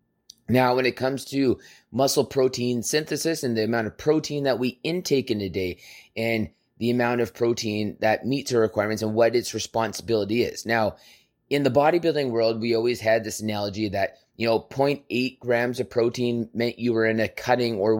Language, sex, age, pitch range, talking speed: English, male, 20-39, 110-130 Hz, 195 wpm